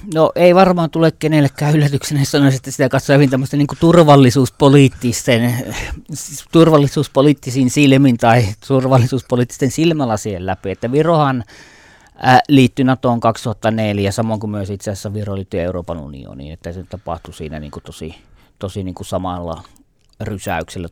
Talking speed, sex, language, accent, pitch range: 125 wpm, male, Finnish, native, 95-125 Hz